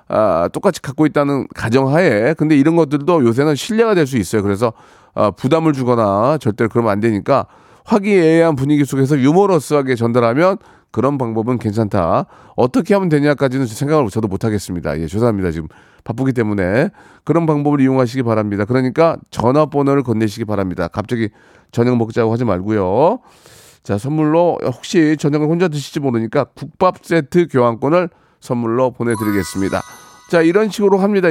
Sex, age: male, 30-49